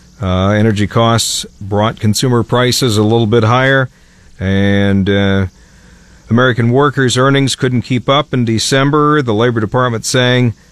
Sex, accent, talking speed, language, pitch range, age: male, American, 135 wpm, English, 95-125 Hz, 50-69